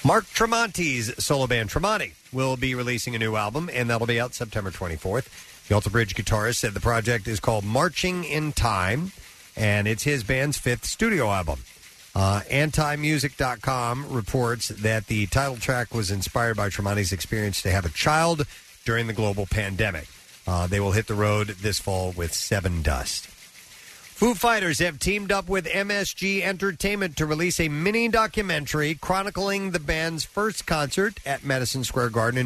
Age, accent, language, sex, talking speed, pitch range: 50-69, American, English, male, 165 wpm, 105-145 Hz